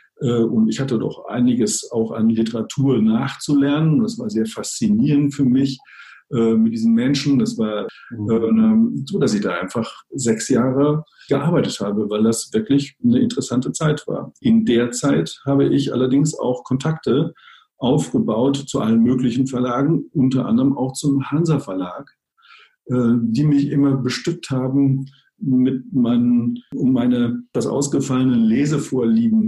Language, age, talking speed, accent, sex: German, 50-69, 140 wpm, German, male